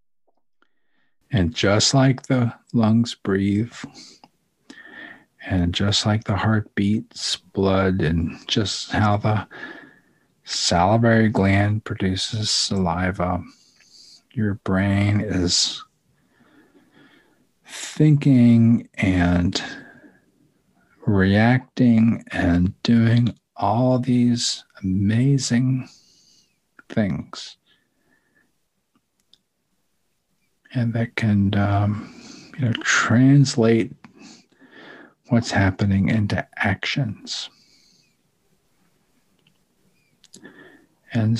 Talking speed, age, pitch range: 65 wpm, 50-69, 95-125 Hz